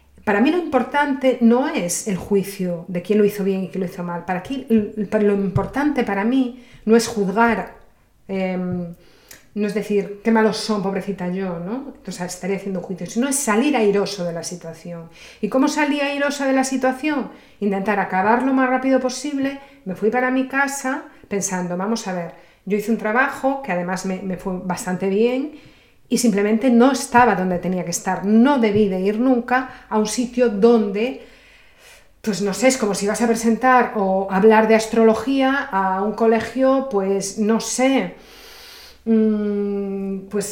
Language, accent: Spanish, Spanish